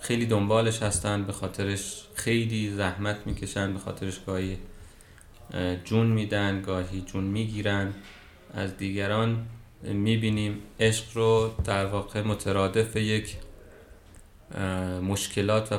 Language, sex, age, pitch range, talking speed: Persian, male, 30-49, 95-110 Hz, 105 wpm